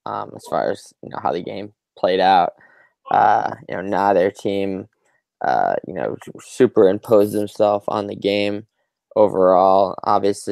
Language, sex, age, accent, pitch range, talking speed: English, male, 10-29, American, 95-105 Hz, 150 wpm